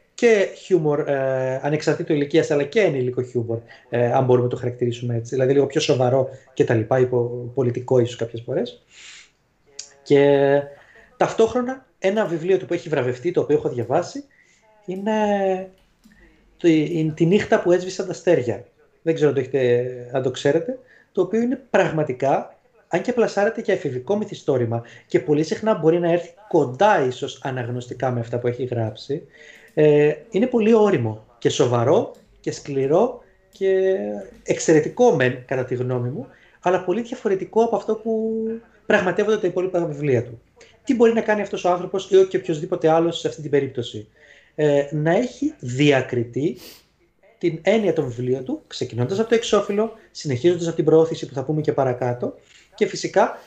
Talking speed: 160 wpm